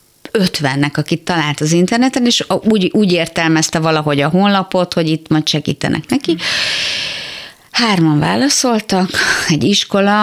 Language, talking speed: Hungarian, 125 wpm